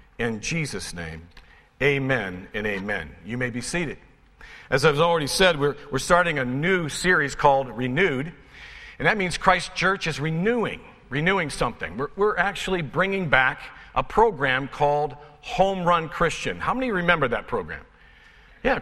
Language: English